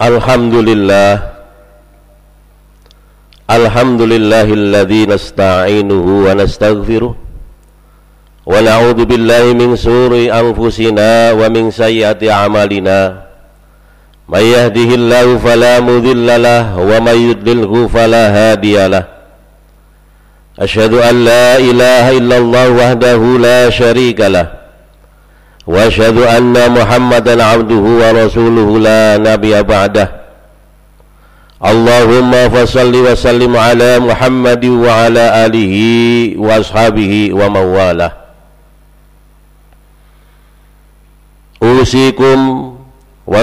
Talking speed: 75 wpm